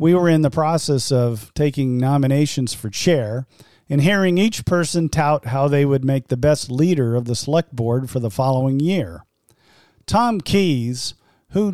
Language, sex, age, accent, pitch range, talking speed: English, male, 50-69, American, 125-170 Hz, 170 wpm